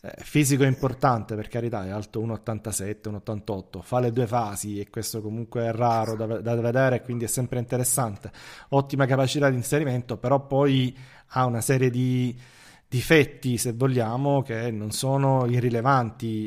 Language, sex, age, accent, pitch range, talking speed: Italian, male, 30-49, native, 115-135 Hz, 155 wpm